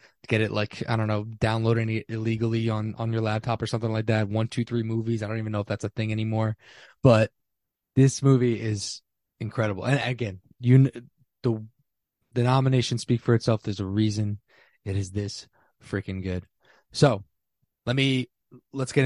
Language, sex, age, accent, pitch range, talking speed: English, male, 20-39, American, 105-125 Hz, 180 wpm